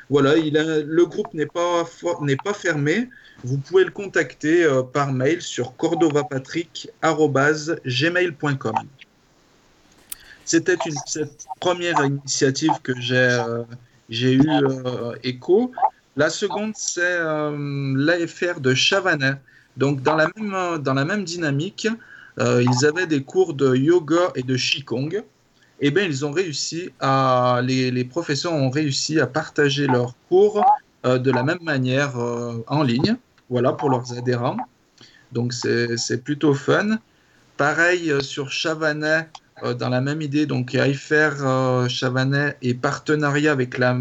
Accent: French